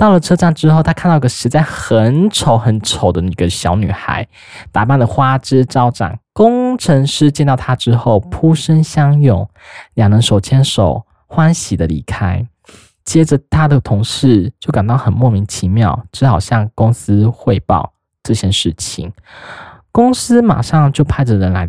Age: 10-29